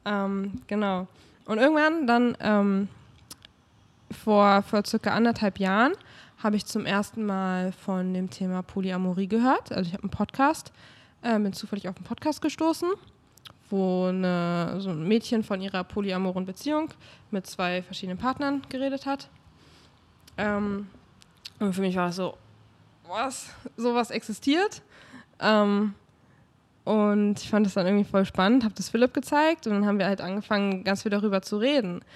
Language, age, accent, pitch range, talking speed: German, 20-39, German, 190-225 Hz, 150 wpm